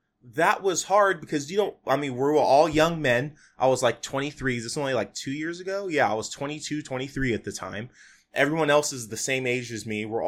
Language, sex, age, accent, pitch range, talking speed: English, male, 20-39, American, 120-155 Hz, 235 wpm